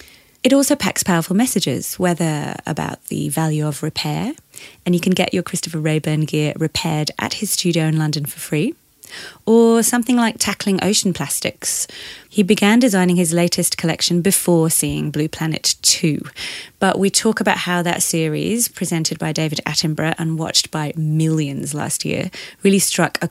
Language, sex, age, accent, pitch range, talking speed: English, female, 30-49, British, 160-195 Hz, 165 wpm